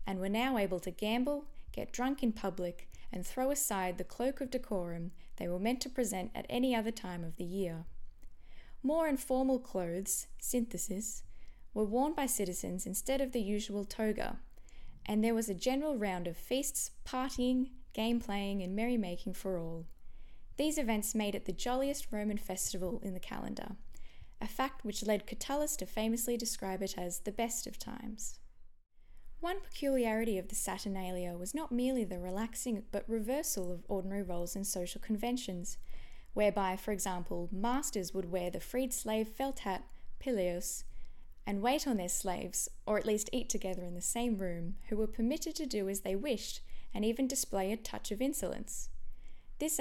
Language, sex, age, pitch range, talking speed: English, female, 10-29, 185-250 Hz, 170 wpm